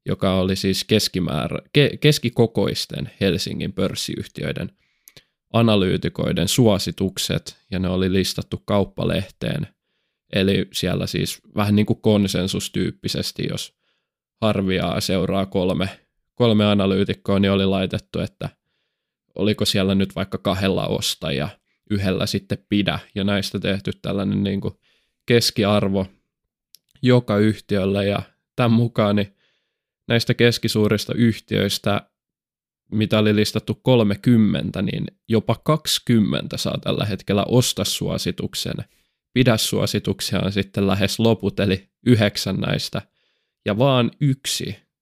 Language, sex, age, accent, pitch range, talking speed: Finnish, male, 20-39, native, 100-115 Hz, 110 wpm